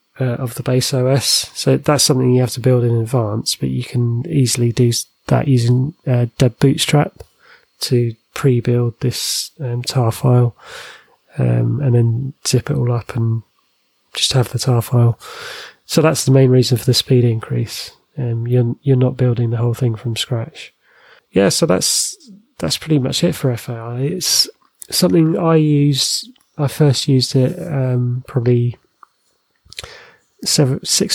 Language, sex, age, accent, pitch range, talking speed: English, male, 20-39, British, 120-140 Hz, 160 wpm